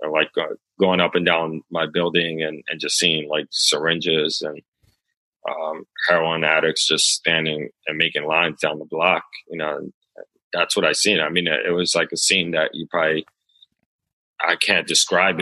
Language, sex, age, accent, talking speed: English, male, 30-49, American, 175 wpm